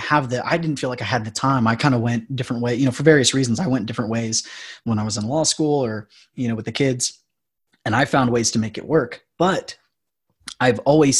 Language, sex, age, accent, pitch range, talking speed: English, male, 30-49, American, 115-135 Hz, 255 wpm